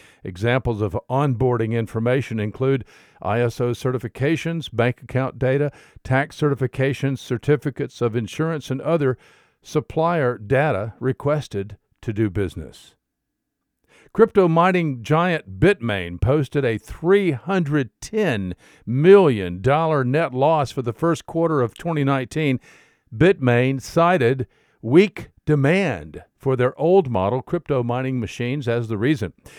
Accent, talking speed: American, 110 wpm